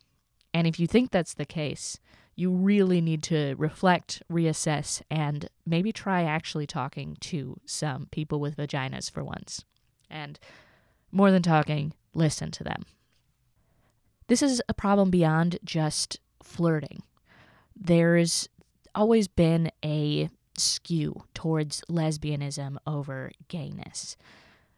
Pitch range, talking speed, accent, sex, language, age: 145-170 Hz, 115 wpm, American, female, English, 20-39